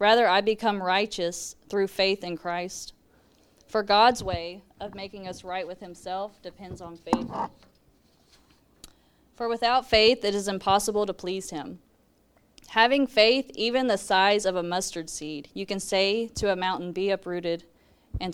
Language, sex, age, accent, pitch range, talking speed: English, female, 20-39, American, 180-220 Hz, 155 wpm